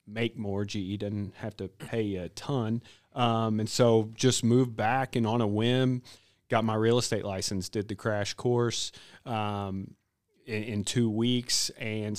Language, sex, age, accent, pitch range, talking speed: English, male, 30-49, American, 105-125 Hz, 165 wpm